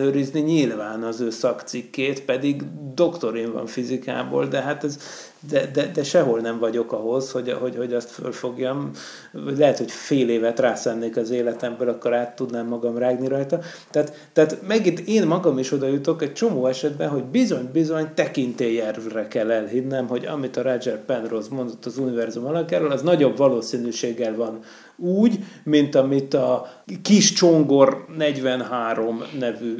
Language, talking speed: Hungarian, 150 wpm